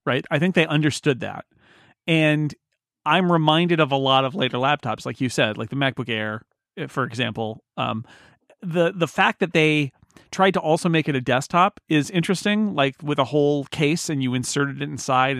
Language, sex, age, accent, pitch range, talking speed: English, male, 40-59, American, 120-150 Hz, 190 wpm